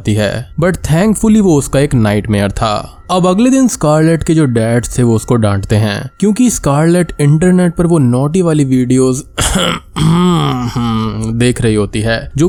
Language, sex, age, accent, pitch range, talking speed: Hindi, male, 20-39, native, 115-165 Hz, 160 wpm